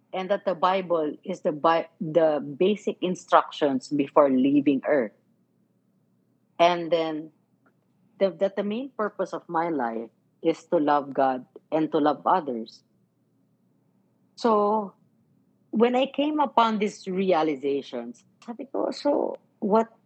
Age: 50-69